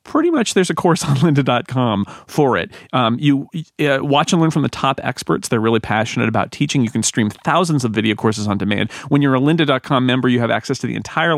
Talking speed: 230 wpm